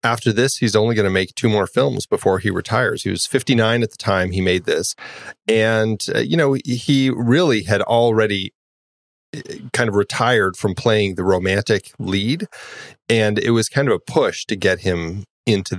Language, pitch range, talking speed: English, 95-125 Hz, 185 wpm